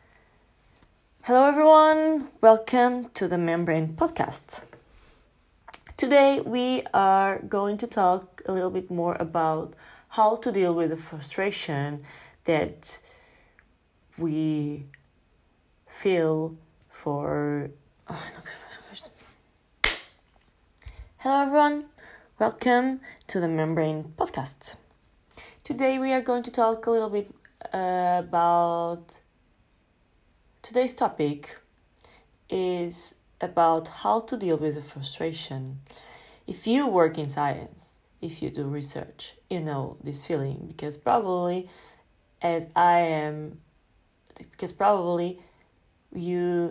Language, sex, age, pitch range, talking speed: English, female, 20-39, 150-195 Hz, 105 wpm